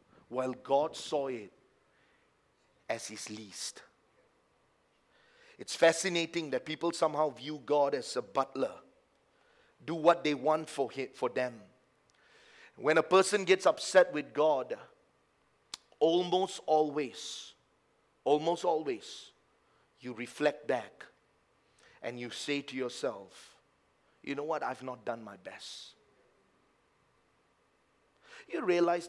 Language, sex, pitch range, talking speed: English, male, 130-170 Hz, 110 wpm